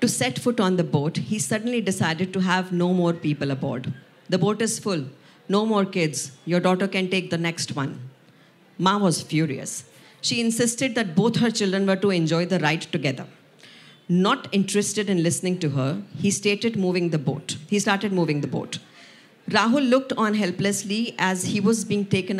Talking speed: 185 wpm